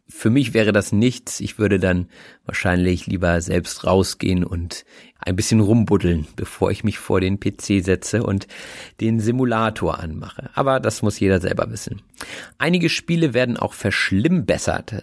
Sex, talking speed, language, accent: male, 150 wpm, German, German